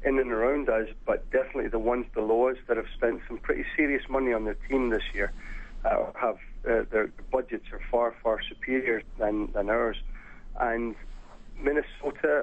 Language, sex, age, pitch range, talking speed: English, male, 40-59, 110-130 Hz, 175 wpm